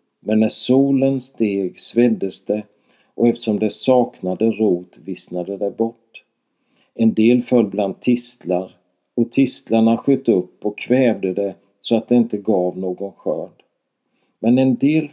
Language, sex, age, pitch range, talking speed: Swedish, male, 50-69, 100-120 Hz, 140 wpm